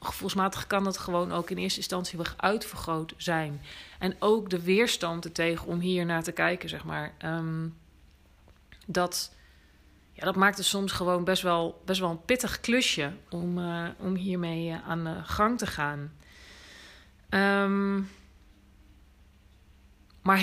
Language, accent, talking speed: Dutch, Dutch, 135 wpm